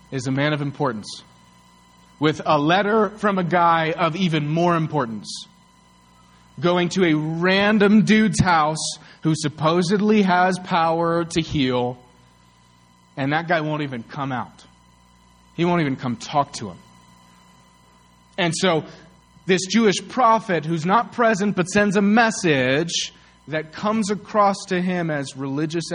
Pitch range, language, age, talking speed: 115-180 Hz, English, 30-49, 140 wpm